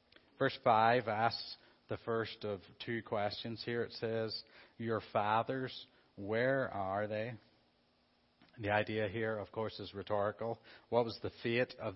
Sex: male